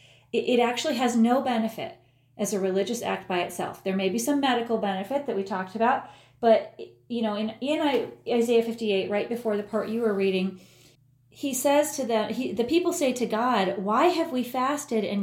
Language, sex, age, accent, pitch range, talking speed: English, female, 30-49, American, 200-285 Hz, 195 wpm